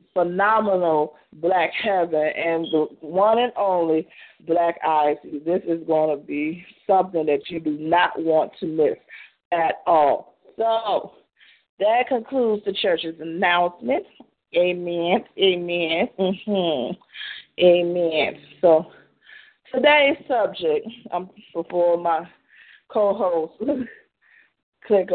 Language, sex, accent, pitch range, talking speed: English, female, American, 165-225 Hz, 105 wpm